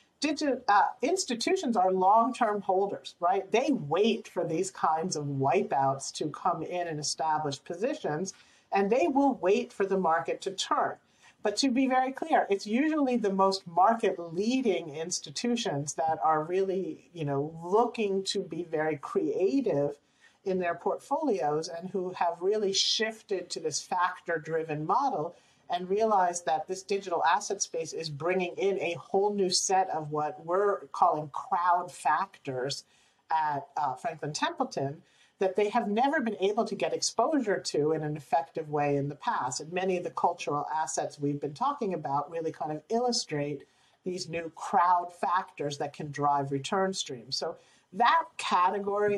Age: 50-69